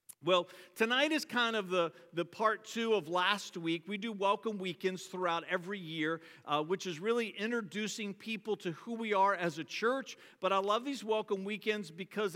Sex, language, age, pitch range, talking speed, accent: male, English, 50-69, 180-220 Hz, 190 wpm, American